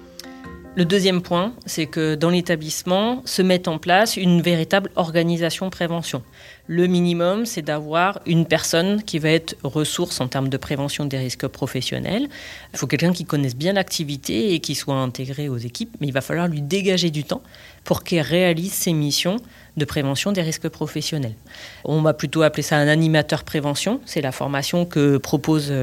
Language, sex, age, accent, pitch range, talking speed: French, female, 30-49, French, 145-180 Hz, 175 wpm